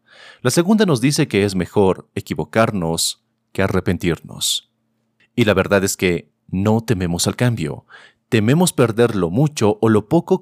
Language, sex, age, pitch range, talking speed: Spanish, male, 40-59, 95-130 Hz, 150 wpm